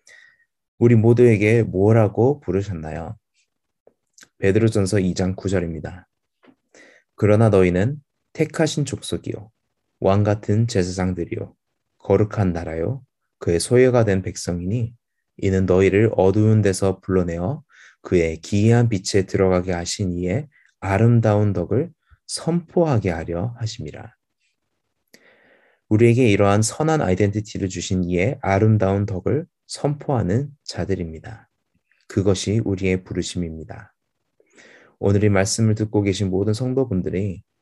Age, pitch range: 20-39, 95-115 Hz